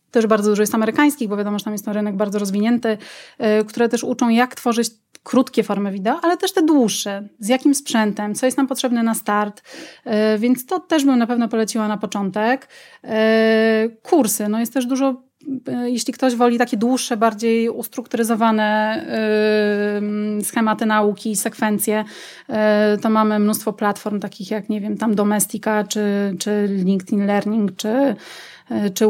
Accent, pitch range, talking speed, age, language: native, 215-255 Hz, 155 wpm, 30-49, Polish